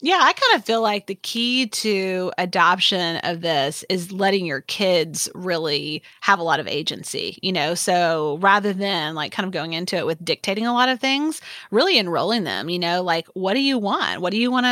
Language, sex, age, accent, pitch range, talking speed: English, female, 30-49, American, 180-225 Hz, 220 wpm